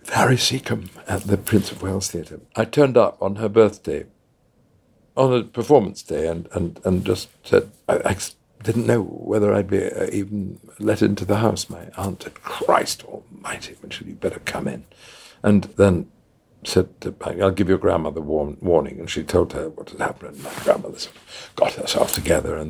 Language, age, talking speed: English, 60-79, 190 wpm